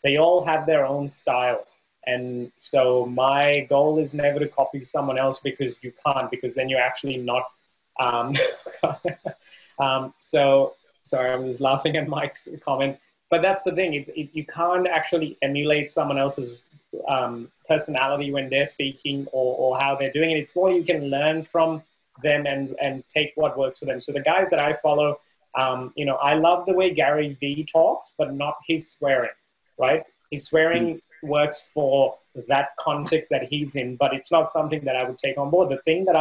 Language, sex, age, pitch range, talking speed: English, male, 20-39, 135-160 Hz, 190 wpm